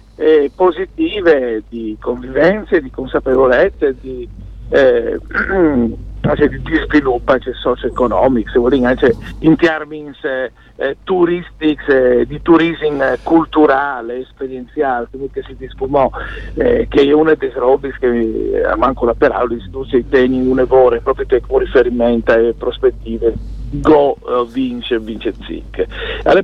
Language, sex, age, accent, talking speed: Italian, male, 50-69, native, 125 wpm